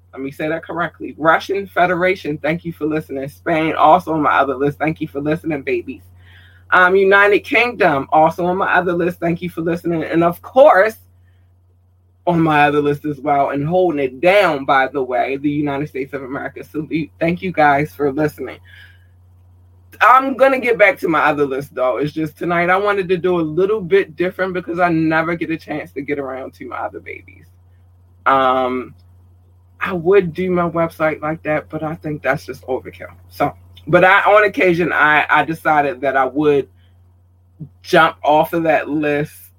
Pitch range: 130-170 Hz